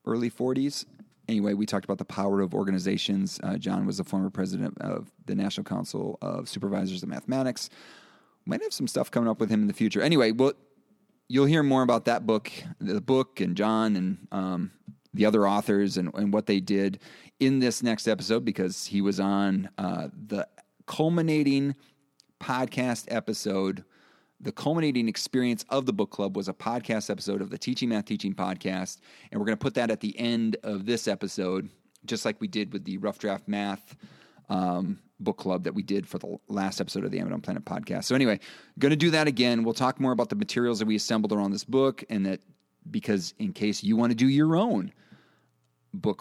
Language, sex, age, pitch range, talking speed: English, male, 30-49, 95-125 Hz, 200 wpm